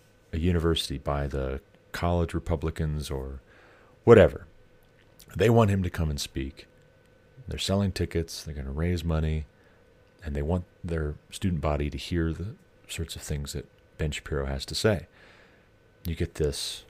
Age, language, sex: 40-59, English, male